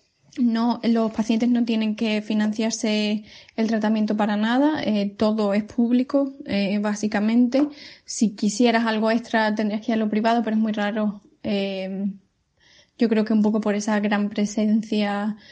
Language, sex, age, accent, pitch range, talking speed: Spanish, female, 10-29, Spanish, 210-230 Hz, 160 wpm